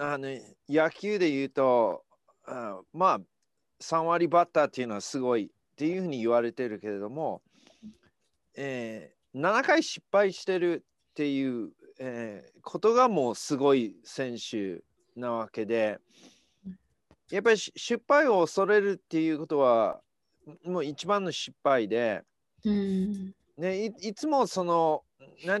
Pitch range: 140-195 Hz